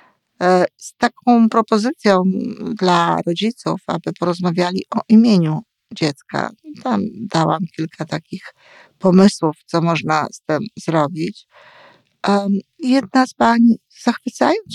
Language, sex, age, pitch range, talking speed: Polish, female, 50-69, 170-220 Hz, 100 wpm